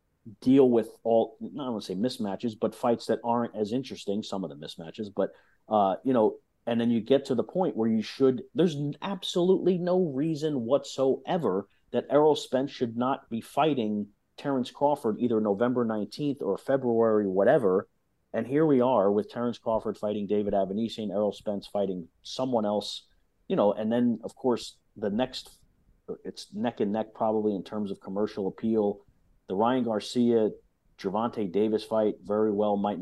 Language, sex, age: English, male, 40-59